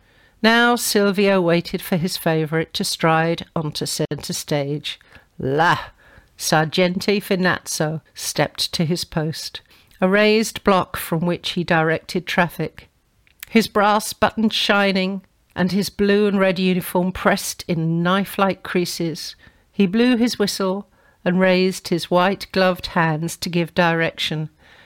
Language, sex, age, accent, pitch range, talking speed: English, female, 50-69, British, 170-205 Hz, 125 wpm